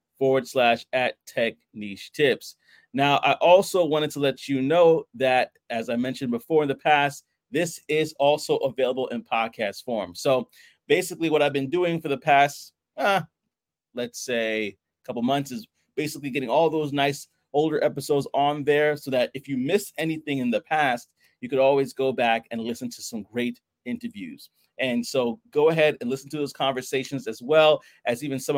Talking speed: 185 wpm